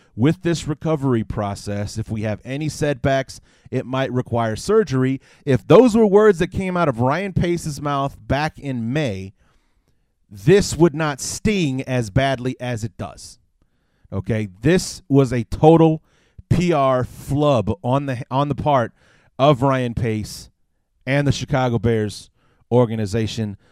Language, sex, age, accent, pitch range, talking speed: English, male, 30-49, American, 110-155 Hz, 140 wpm